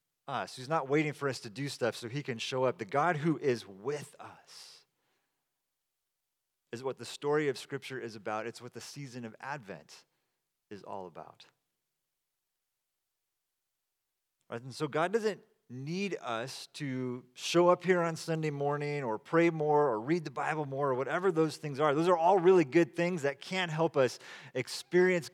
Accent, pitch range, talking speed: American, 130-175 Hz, 175 wpm